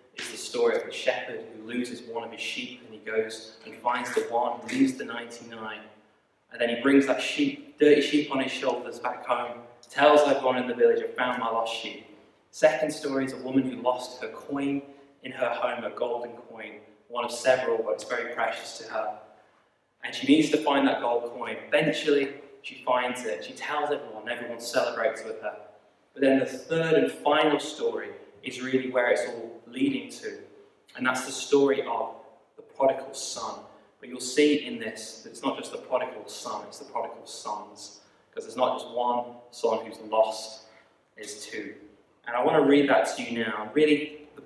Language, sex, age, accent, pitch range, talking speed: English, male, 20-39, British, 120-150 Hz, 200 wpm